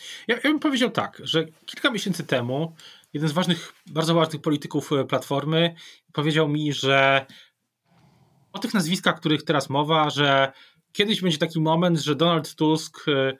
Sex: male